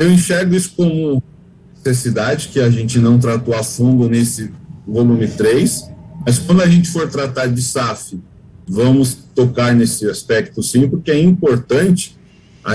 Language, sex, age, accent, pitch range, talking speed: Portuguese, male, 50-69, Brazilian, 125-160 Hz, 150 wpm